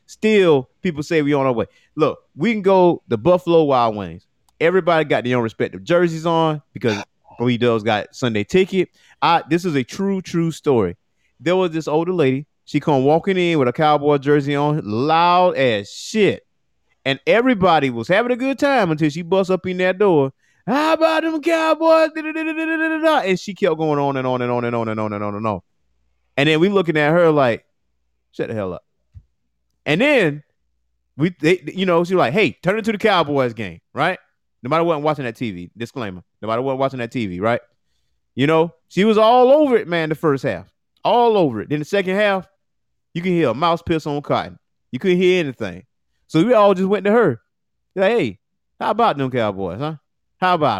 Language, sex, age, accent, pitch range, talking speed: English, male, 30-49, American, 120-185 Hz, 200 wpm